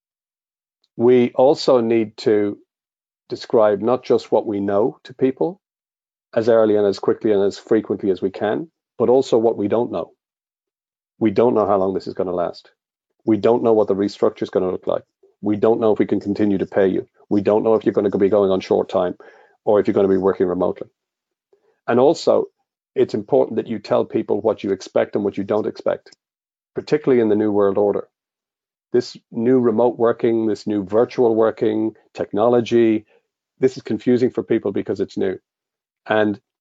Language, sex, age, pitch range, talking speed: English, male, 40-59, 105-120 Hz, 195 wpm